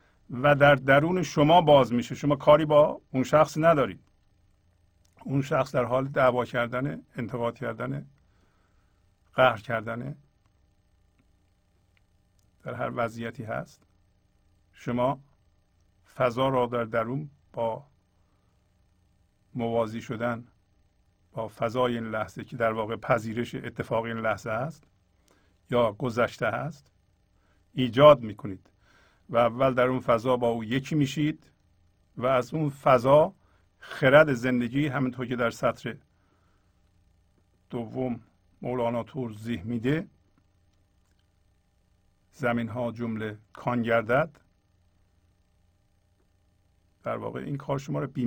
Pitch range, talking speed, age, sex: 90-130 Hz, 105 wpm, 50-69, male